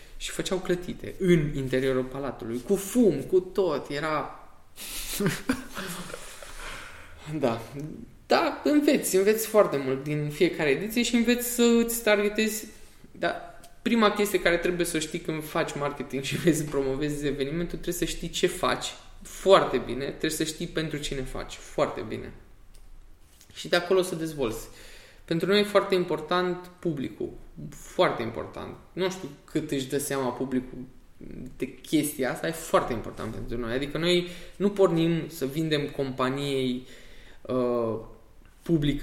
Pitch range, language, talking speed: 130-185 Hz, Romanian, 140 wpm